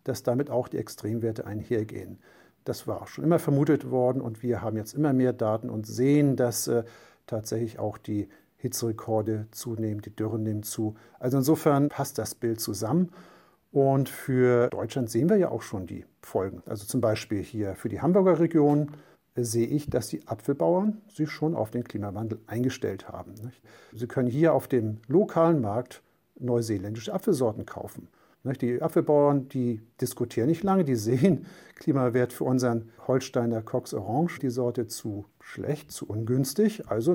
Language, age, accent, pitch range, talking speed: German, 50-69, German, 115-145 Hz, 160 wpm